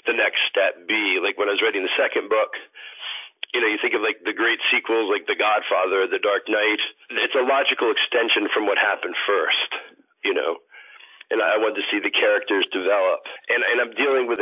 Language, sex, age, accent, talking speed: English, male, 50-69, American, 210 wpm